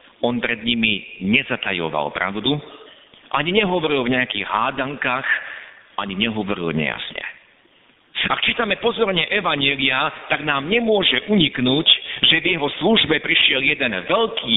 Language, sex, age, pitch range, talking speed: Slovak, male, 50-69, 110-160 Hz, 110 wpm